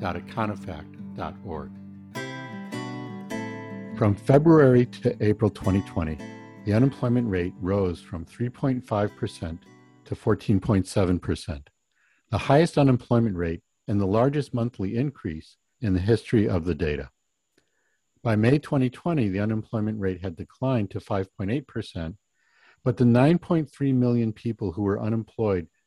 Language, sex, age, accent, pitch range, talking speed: English, male, 60-79, American, 95-120 Hz, 115 wpm